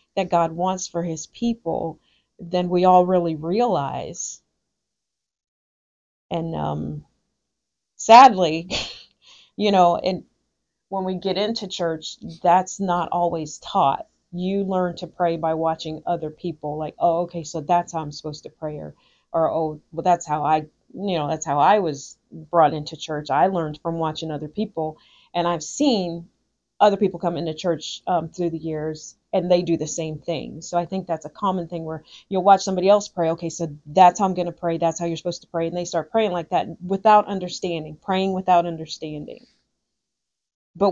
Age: 40-59